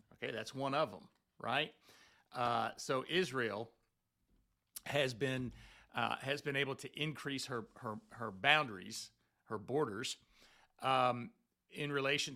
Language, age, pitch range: English, 50-69, 115-140 Hz